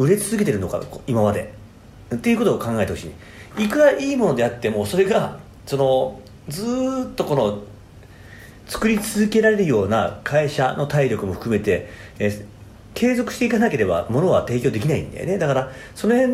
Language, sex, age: Japanese, male, 40-59